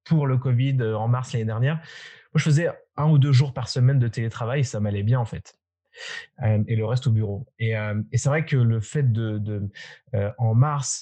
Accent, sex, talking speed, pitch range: French, male, 230 wpm, 115-145 Hz